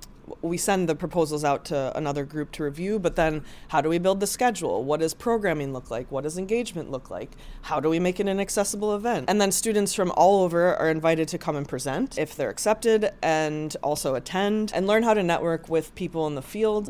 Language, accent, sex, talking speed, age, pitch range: English, American, female, 225 wpm, 20-39, 160-200 Hz